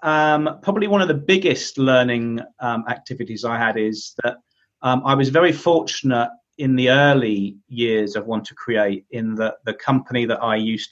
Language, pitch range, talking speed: English, 105-125 Hz, 180 wpm